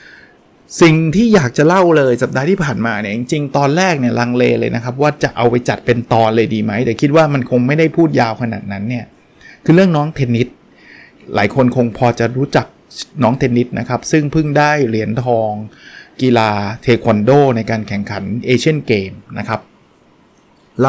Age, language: 20-39, Thai